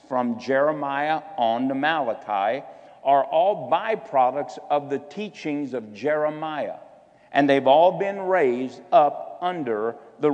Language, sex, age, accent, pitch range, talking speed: English, male, 50-69, American, 135-175 Hz, 120 wpm